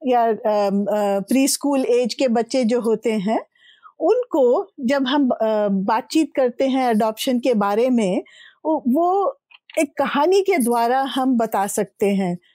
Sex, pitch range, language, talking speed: female, 230-310 Hz, Hindi, 135 wpm